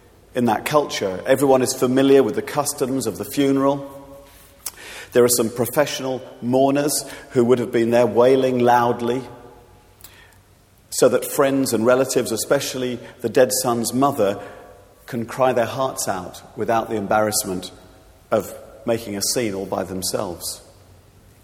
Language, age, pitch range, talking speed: English, 40-59, 105-130 Hz, 135 wpm